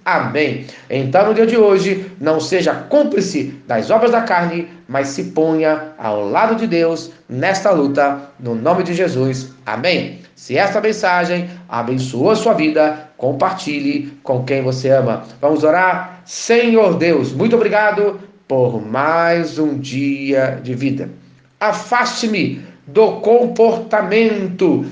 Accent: Brazilian